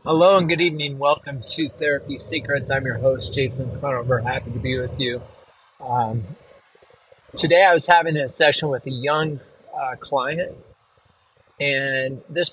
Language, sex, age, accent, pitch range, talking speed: English, male, 30-49, American, 130-155 Hz, 155 wpm